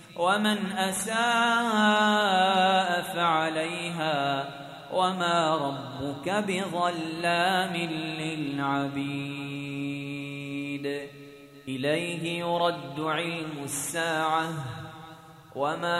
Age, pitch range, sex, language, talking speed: 20-39, 135-170 Hz, male, Arabic, 45 wpm